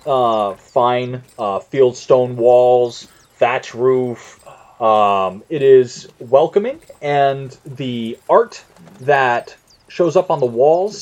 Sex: male